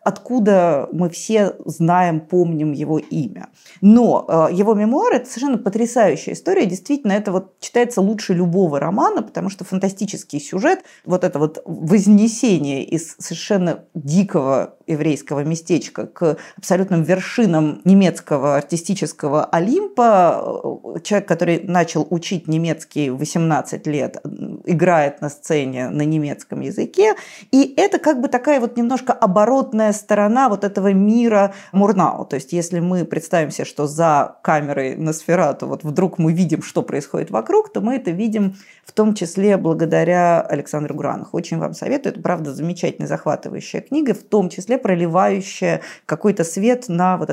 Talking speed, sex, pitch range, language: 140 wpm, female, 160-210 Hz, Russian